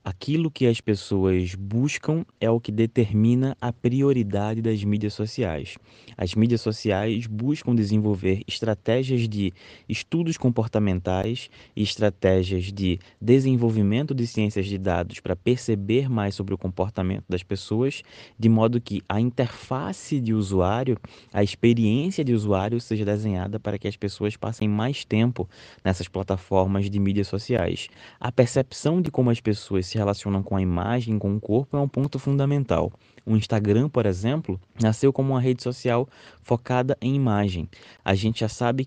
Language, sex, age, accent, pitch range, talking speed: Portuguese, male, 20-39, Brazilian, 100-125 Hz, 155 wpm